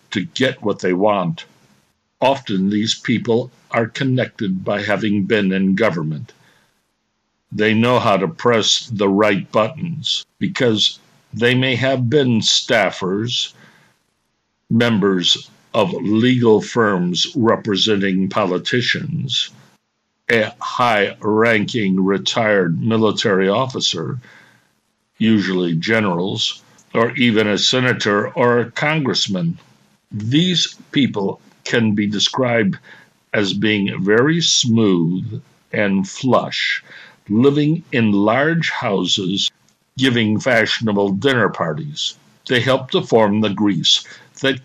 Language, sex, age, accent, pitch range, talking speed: English, male, 60-79, American, 105-135 Hz, 100 wpm